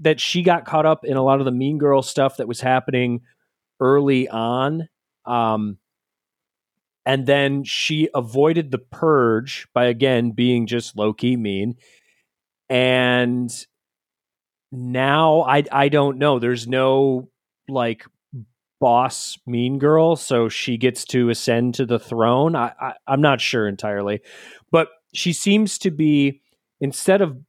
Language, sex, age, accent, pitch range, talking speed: English, male, 30-49, American, 120-150 Hz, 140 wpm